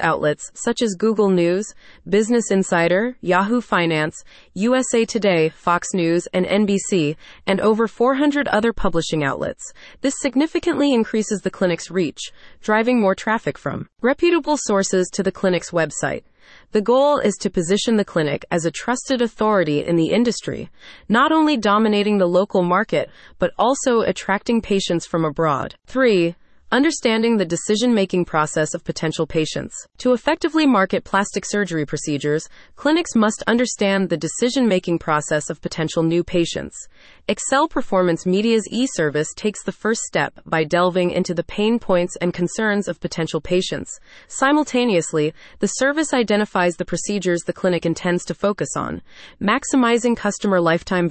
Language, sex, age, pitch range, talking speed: English, female, 20-39, 170-230 Hz, 140 wpm